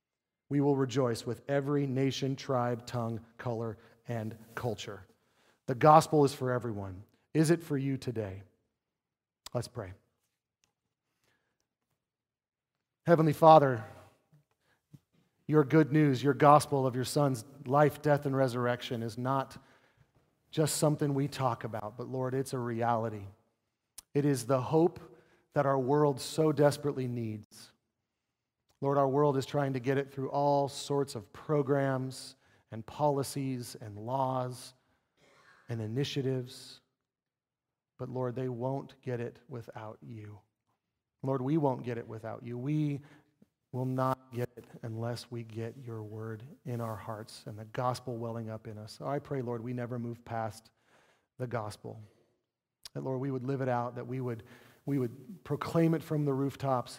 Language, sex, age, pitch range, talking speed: English, male, 40-59, 115-140 Hz, 145 wpm